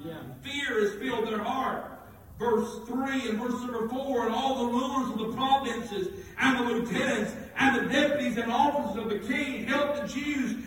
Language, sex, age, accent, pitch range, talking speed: English, male, 40-59, American, 255-320 Hz, 180 wpm